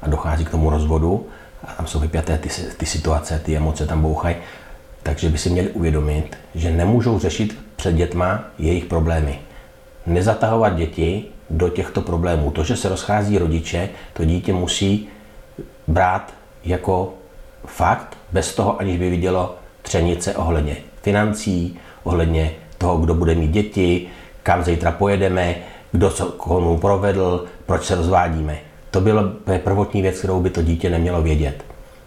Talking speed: 145 wpm